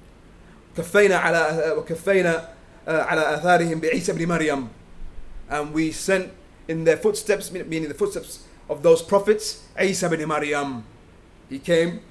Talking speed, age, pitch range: 105 wpm, 30-49, 160-215 Hz